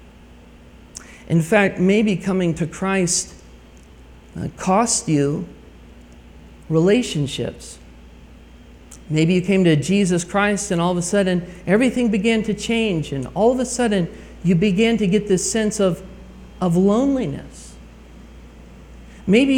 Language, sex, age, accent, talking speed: English, male, 50-69, American, 125 wpm